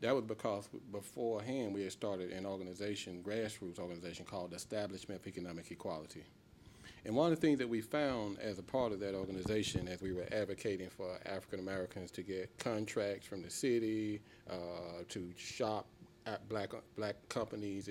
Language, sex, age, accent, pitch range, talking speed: English, male, 40-59, American, 95-115 Hz, 165 wpm